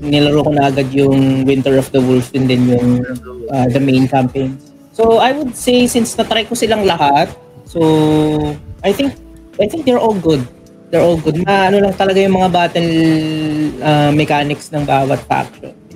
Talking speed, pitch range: 175 wpm, 130-175 Hz